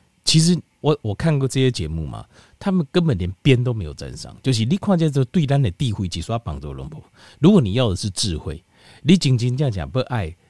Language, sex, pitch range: Chinese, male, 90-140 Hz